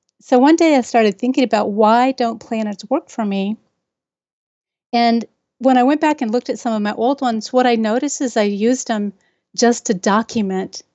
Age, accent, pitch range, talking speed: 40-59, American, 210-250 Hz, 195 wpm